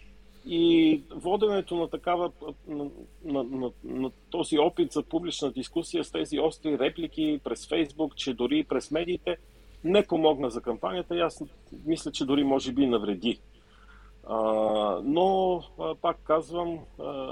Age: 40-59